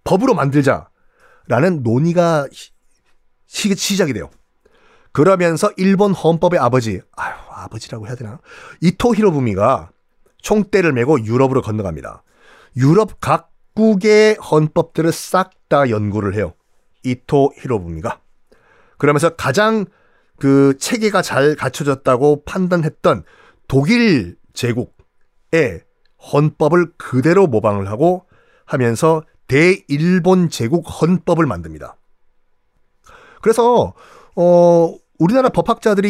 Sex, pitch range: male, 125-185 Hz